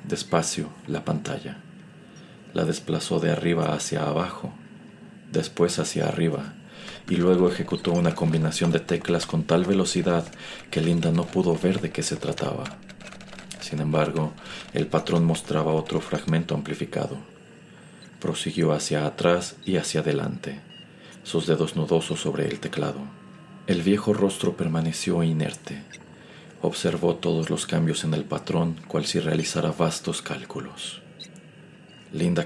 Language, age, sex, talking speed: Spanish, 40-59, male, 130 wpm